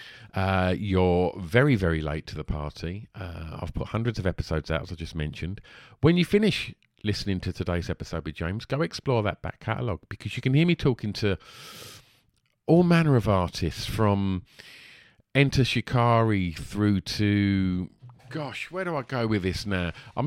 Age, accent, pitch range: 50-69, British, 95-130 Hz